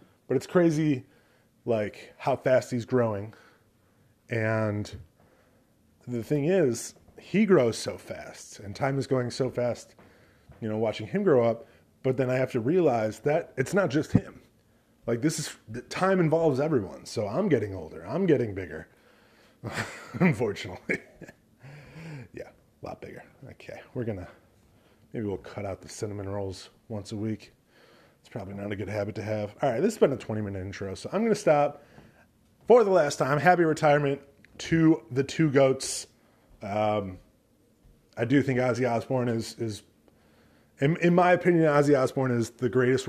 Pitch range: 110-150 Hz